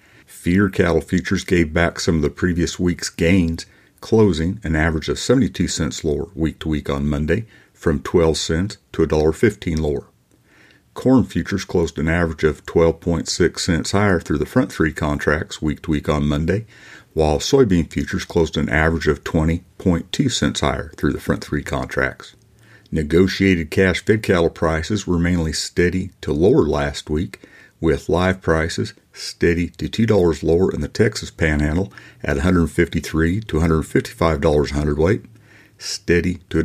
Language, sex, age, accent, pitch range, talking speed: English, male, 50-69, American, 80-95 Hz, 165 wpm